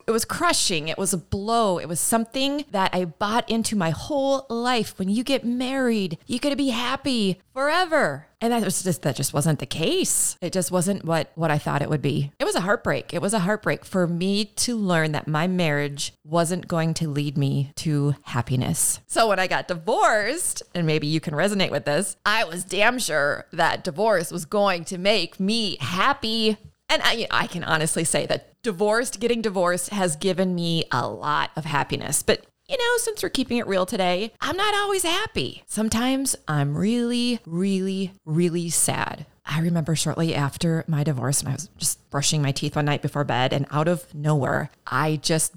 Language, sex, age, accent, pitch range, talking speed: English, female, 30-49, American, 160-235 Hz, 200 wpm